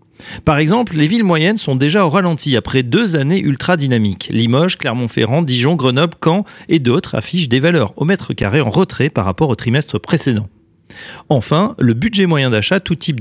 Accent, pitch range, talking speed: French, 115-175 Hz, 180 wpm